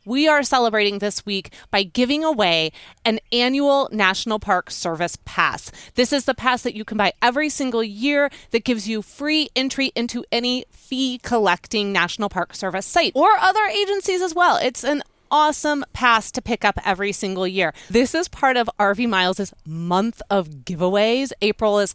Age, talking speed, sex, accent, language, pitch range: 30-49, 170 wpm, female, American, English, 185-250 Hz